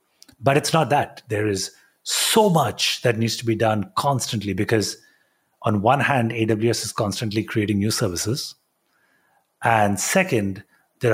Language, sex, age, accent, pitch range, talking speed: English, male, 30-49, Indian, 105-125 Hz, 145 wpm